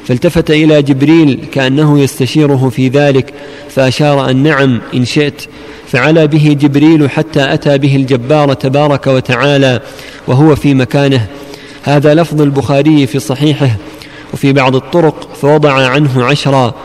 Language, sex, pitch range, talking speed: Arabic, male, 135-155 Hz, 125 wpm